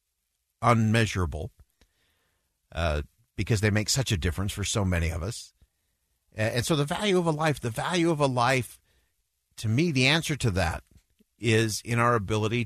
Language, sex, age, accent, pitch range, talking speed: English, male, 50-69, American, 90-130 Hz, 165 wpm